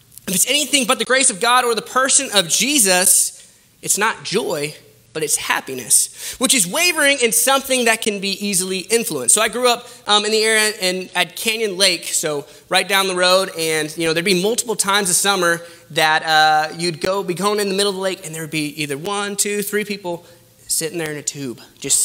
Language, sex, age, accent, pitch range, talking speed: English, male, 20-39, American, 185-245 Hz, 225 wpm